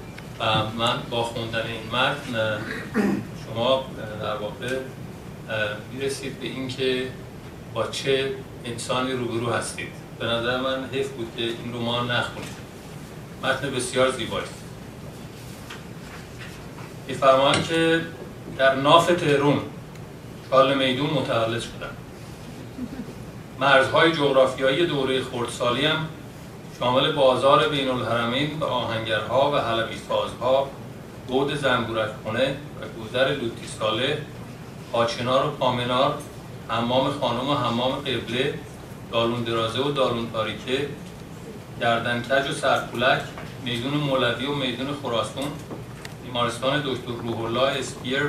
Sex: male